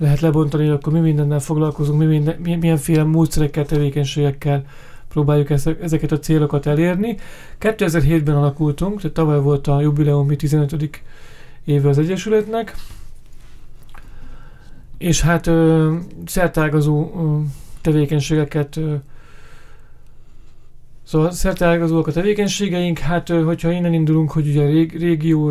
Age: 40-59